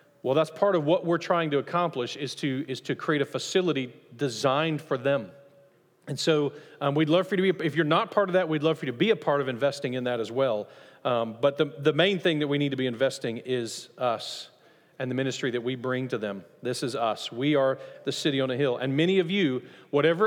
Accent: American